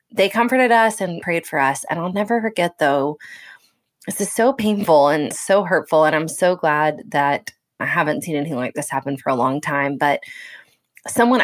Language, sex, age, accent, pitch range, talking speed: English, female, 20-39, American, 145-210 Hz, 195 wpm